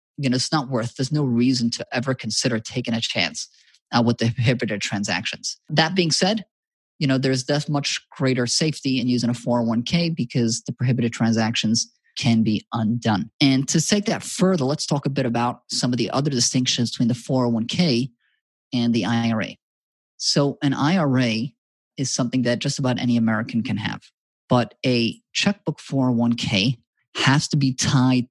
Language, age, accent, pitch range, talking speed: English, 30-49, American, 120-145 Hz, 170 wpm